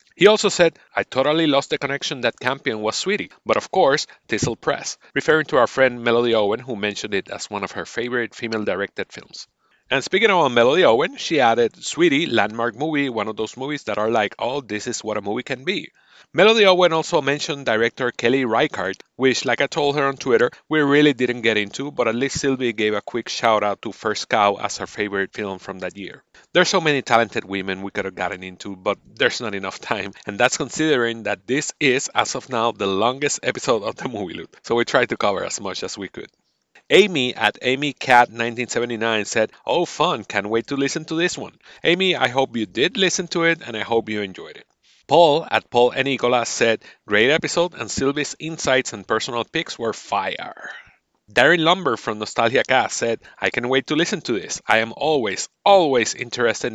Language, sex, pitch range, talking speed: English, male, 110-145 Hz, 210 wpm